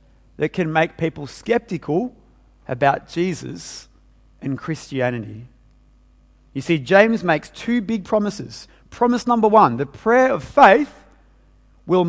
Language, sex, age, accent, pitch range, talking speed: English, male, 30-49, Australian, 130-205 Hz, 120 wpm